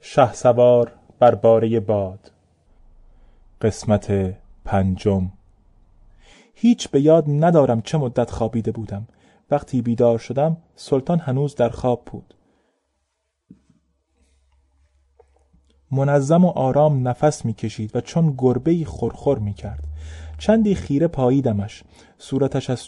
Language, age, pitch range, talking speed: Persian, 30-49, 115-150 Hz, 100 wpm